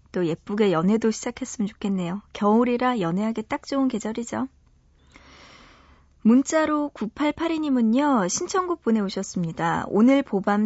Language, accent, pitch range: Korean, native, 190-260 Hz